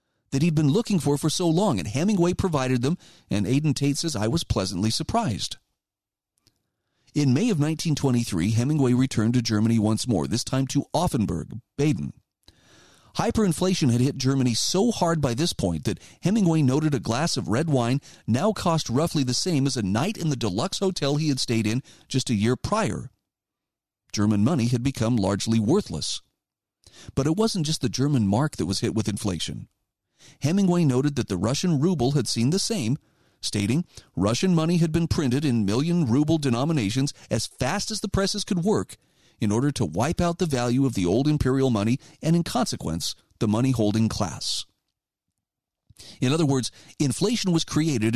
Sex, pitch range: male, 115-165 Hz